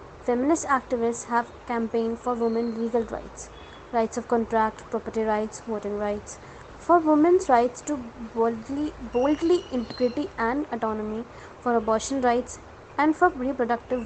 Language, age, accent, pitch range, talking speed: English, 20-39, Indian, 230-265 Hz, 130 wpm